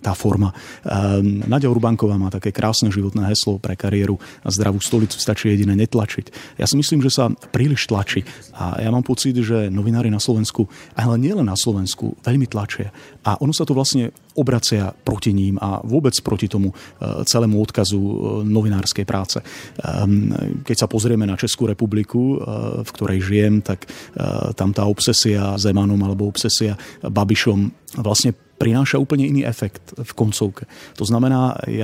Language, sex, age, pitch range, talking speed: Slovak, male, 30-49, 100-120 Hz, 155 wpm